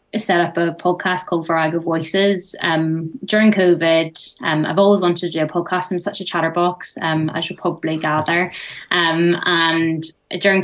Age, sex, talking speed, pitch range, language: 20-39, female, 180 wpm, 165-195 Hz, English